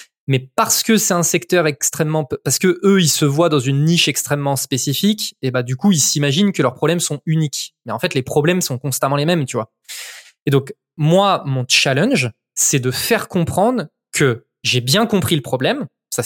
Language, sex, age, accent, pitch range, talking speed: French, male, 20-39, French, 135-190 Hz, 205 wpm